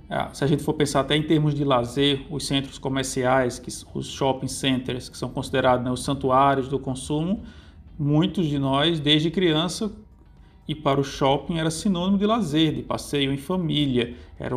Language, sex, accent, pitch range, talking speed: Portuguese, male, Brazilian, 135-165 Hz, 180 wpm